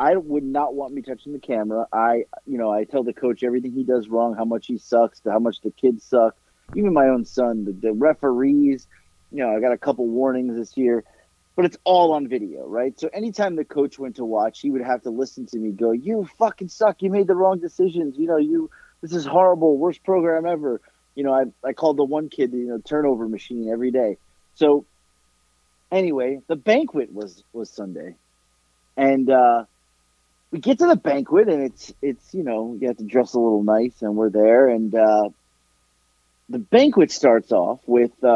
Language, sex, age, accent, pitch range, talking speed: English, male, 30-49, American, 115-160 Hz, 210 wpm